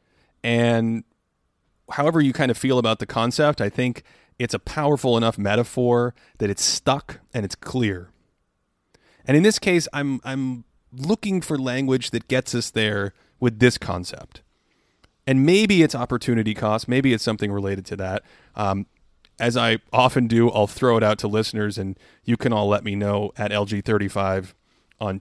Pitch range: 105-130 Hz